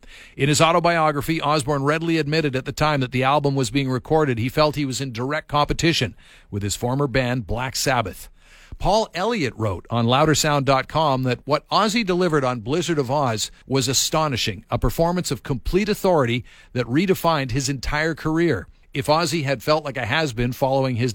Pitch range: 120-155 Hz